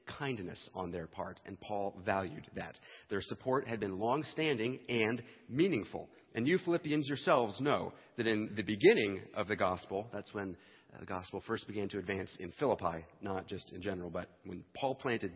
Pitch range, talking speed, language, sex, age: 95-125 Hz, 175 wpm, English, male, 40-59